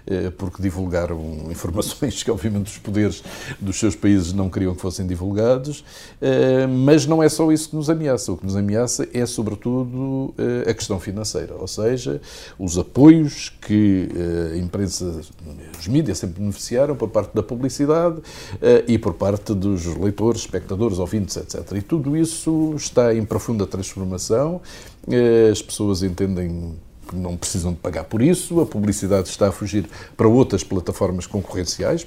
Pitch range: 95-130 Hz